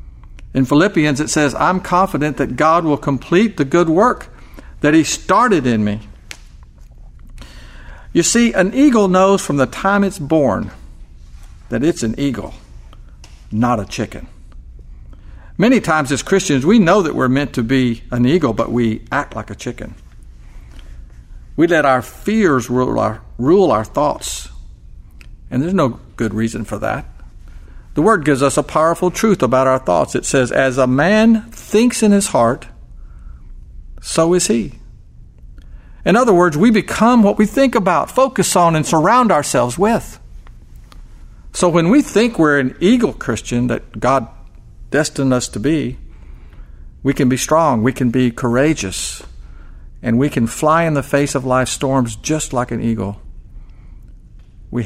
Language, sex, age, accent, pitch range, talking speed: English, male, 50-69, American, 105-165 Hz, 155 wpm